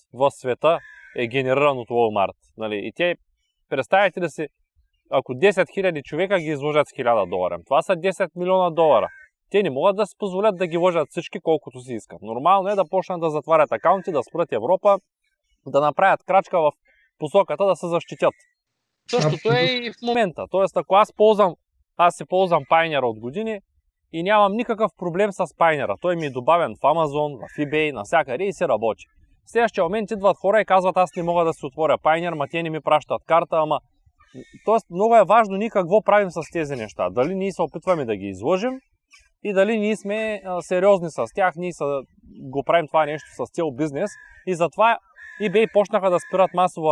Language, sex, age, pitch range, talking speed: Bulgarian, male, 20-39, 150-195 Hz, 190 wpm